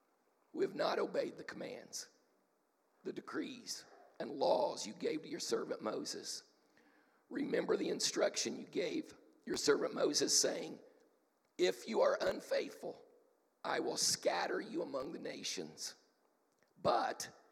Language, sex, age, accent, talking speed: English, male, 50-69, American, 125 wpm